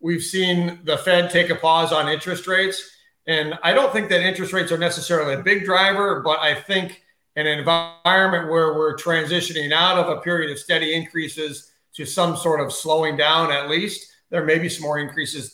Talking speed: 200 wpm